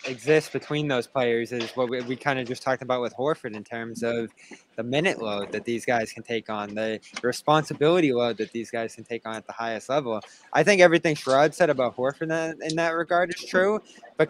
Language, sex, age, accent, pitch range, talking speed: English, male, 20-39, American, 120-170 Hz, 225 wpm